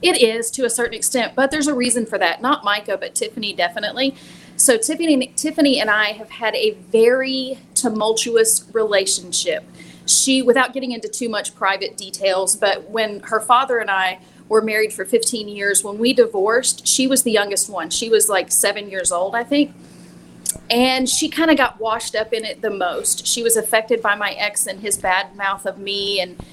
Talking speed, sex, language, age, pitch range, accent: 195 wpm, female, English, 30-49, 195-245 Hz, American